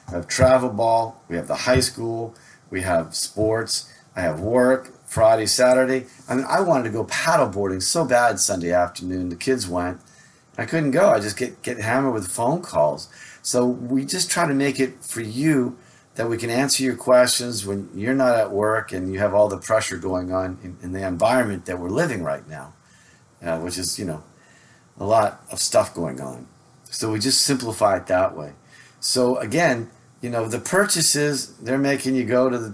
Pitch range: 95-130 Hz